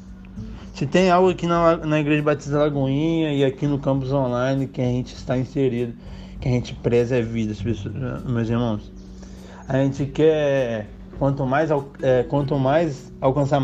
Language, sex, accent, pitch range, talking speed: Portuguese, male, Brazilian, 110-155 Hz, 150 wpm